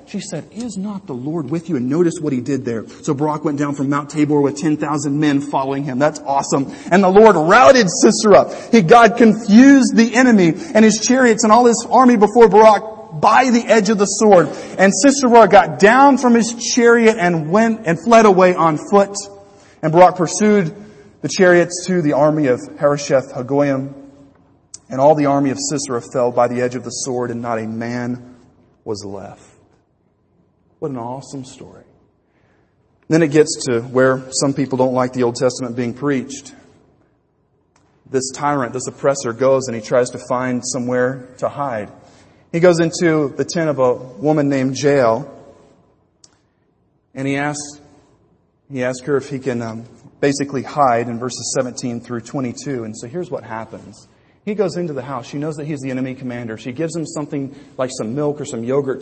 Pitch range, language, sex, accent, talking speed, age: 125-175 Hz, English, male, American, 185 wpm, 40-59